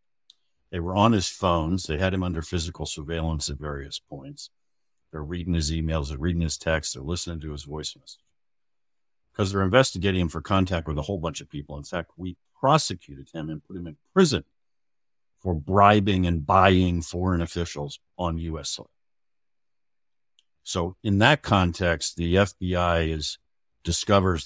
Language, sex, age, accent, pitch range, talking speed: English, male, 60-79, American, 80-105 Hz, 160 wpm